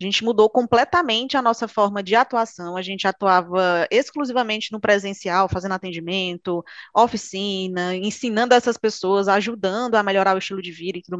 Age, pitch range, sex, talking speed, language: 20-39, 190-240 Hz, female, 160 wpm, Portuguese